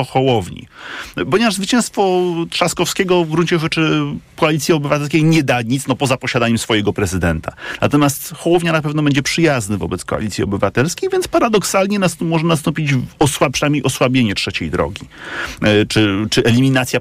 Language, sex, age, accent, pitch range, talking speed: Polish, male, 40-59, native, 110-160 Hz, 140 wpm